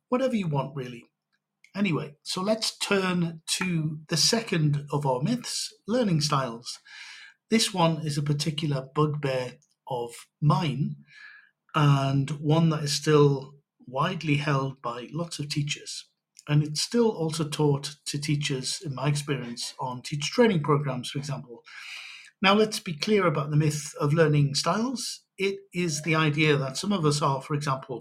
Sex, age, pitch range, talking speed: male, 50-69, 140-170 Hz, 155 wpm